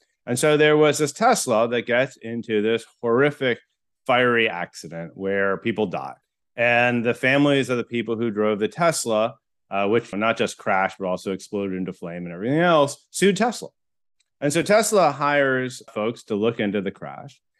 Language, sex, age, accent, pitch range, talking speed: English, male, 30-49, American, 105-140 Hz, 175 wpm